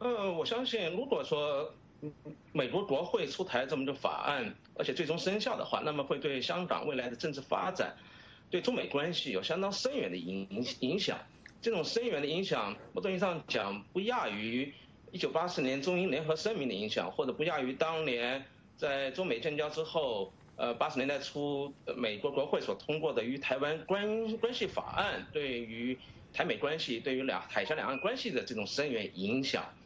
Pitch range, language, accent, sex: 125-180 Hz, English, Chinese, male